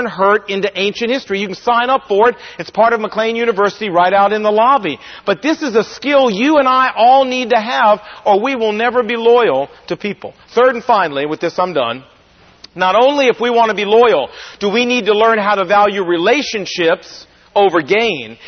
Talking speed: 215 wpm